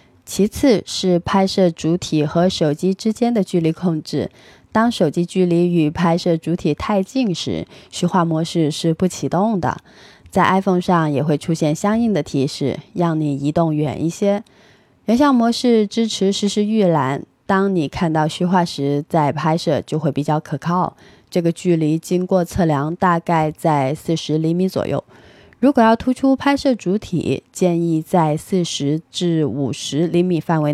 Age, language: 20-39, Chinese